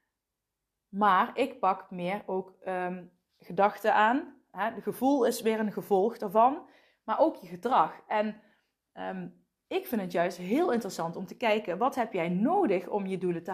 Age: 20-39